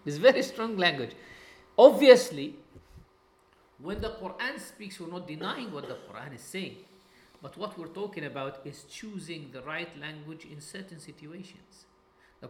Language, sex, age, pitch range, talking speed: English, male, 50-69, 145-200 Hz, 150 wpm